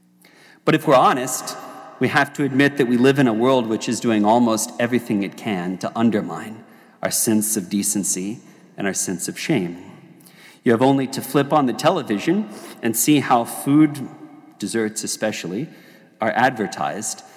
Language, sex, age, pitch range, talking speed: English, male, 40-59, 105-130 Hz, 165 wpm